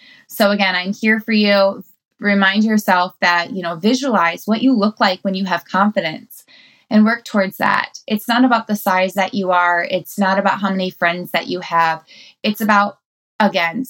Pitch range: 175-210 Hz